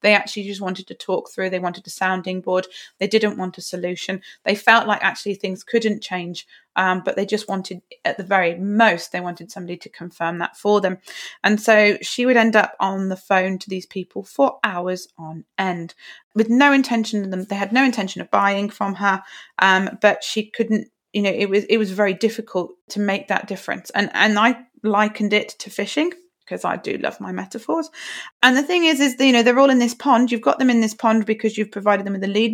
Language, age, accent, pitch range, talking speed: English, 30-49, British, 190-230 Hz, 230 wpm